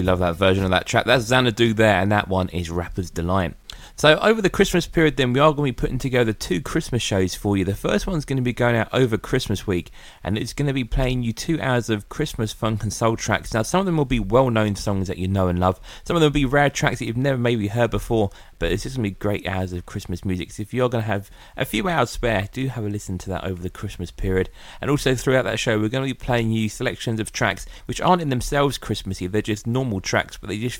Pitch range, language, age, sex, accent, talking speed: 90-120 Hz, English, 30-49, male, British, 270 wpm